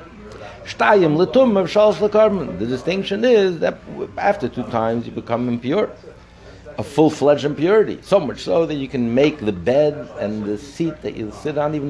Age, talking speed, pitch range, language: 60-79, 150 wpm, 110-155 Hz, English